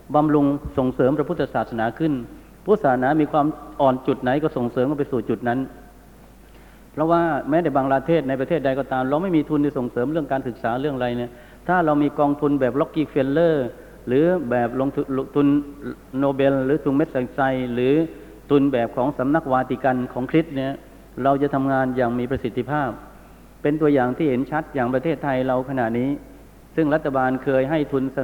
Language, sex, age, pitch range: Thai, male, 60-79, 125-145 Hz